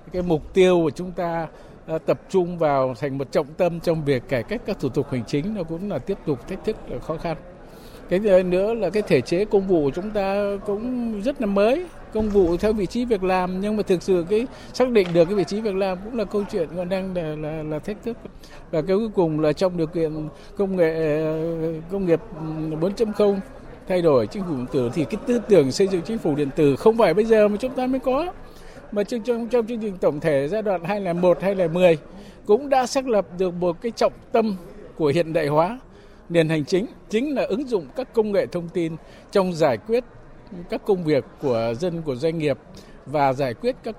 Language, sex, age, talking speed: Vietnamese, male, 60-79, 225 wpm